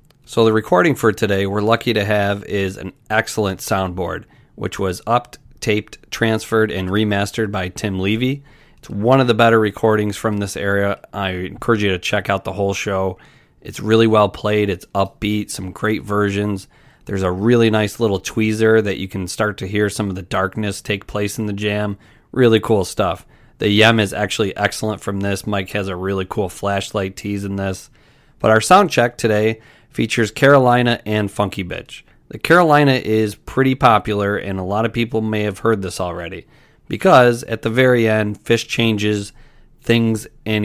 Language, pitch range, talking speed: English, 100-115 Hz, 185 wpm